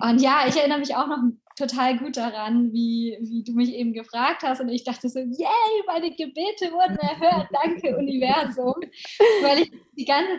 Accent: German